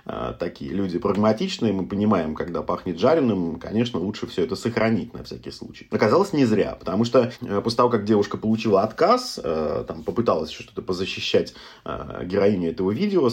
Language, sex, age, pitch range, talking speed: Russian, male, 30-49, 105-130 Hz, 160 wpm